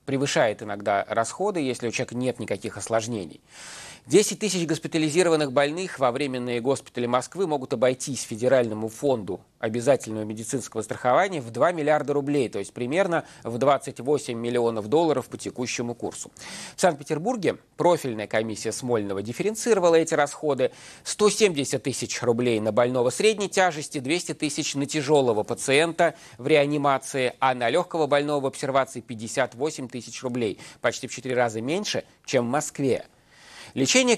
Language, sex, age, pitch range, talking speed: Russian, male, 30-49, 120-160 Hz, 135 wpm